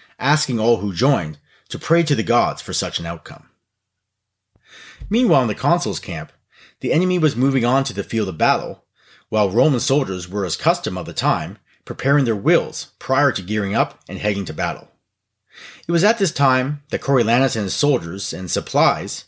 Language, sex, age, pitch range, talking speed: English, male, 30-49, 105-155 Hz, 185 wpm